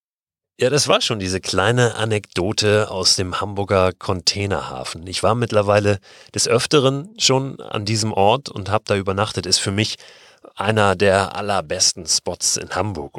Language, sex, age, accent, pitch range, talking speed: German, male, 30-49, German, 95-120 Hz, 150 wpm